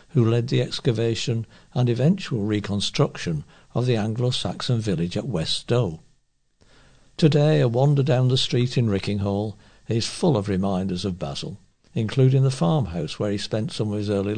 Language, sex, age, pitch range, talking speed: English, male, 60-79, 110-145 Hz, 160 wpm